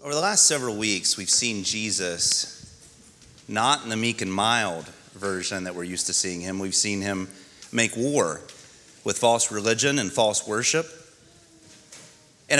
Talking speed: 155 wpm